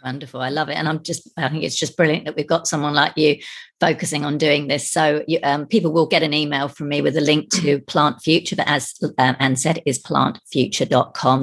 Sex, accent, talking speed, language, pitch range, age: female, British, 235 wpm, English, 150-195 Hz, 40-59